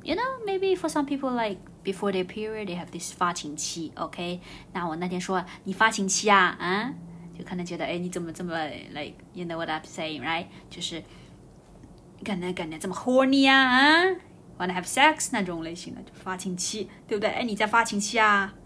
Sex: female